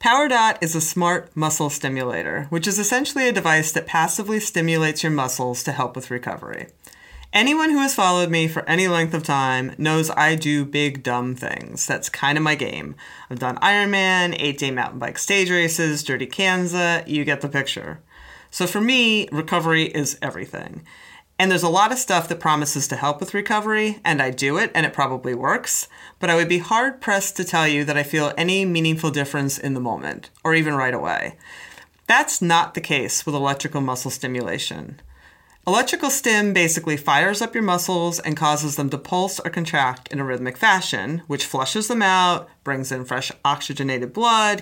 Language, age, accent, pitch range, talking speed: English, 30-49, American, 140-190 Hz, 185 wpm